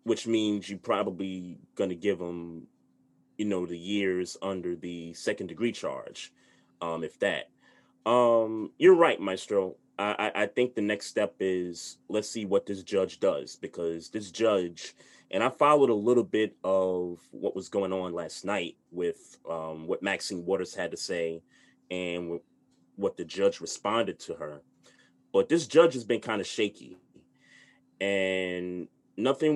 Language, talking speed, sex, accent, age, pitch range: English, 160 wpm, male, American, 30-49, 90-115 Hz